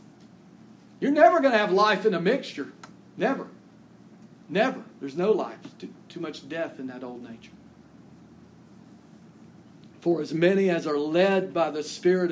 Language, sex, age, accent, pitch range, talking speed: English, male, 50-69, American, 145-190 Hz, 145 wpm